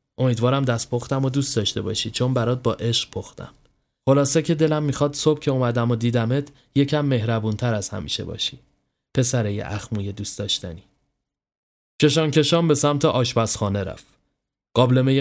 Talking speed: 145 wpm